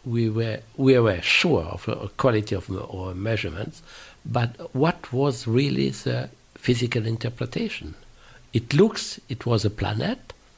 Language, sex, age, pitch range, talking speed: English, male, 60-79, 105-125 Hz, 140 wpm